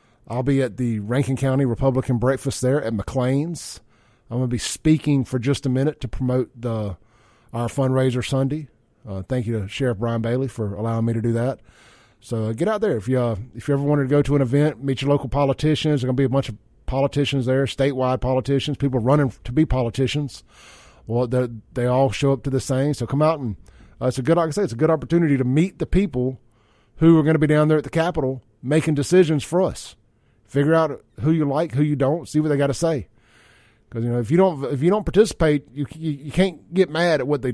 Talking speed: 240 wpm